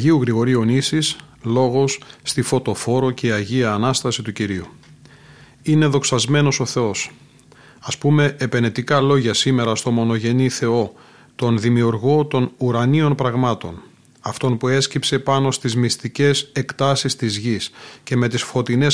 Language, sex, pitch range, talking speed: Greek, male, 120-140 Hz, 130 wpm